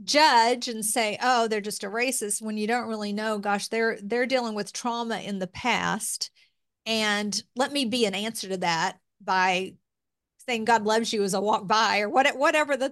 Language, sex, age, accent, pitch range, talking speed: English, female, 40-59, American, 205-255 Hz, 195 wpm